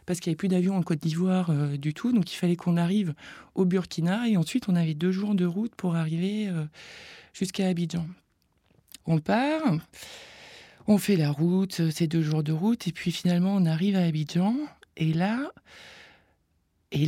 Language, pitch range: French, 160-190 Hz